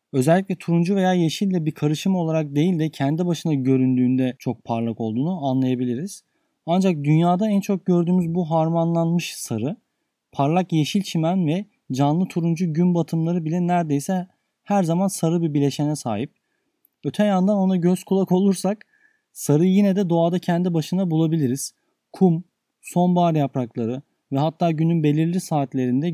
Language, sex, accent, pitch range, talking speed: Turkish, male, native, 145-185 Hz, 140 wpm